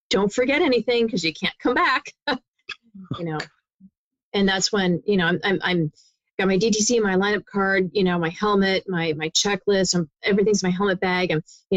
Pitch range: 175-200 Hz